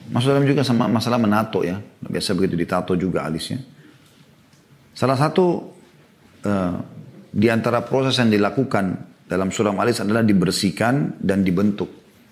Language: Indonesian